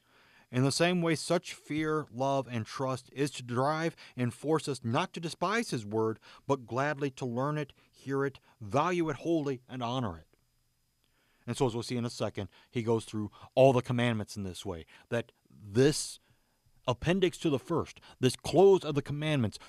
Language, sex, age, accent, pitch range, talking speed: English, male, 40-59, American, 110-135 Hz, 185 wpm